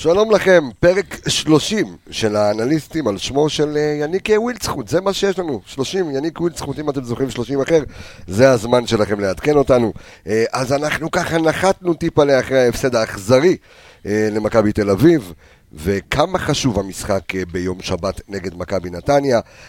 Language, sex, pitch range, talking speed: Hebrew, male, 105-160 Hz, 145 wpm